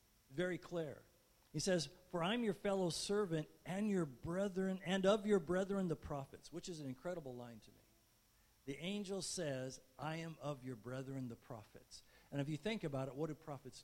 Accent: American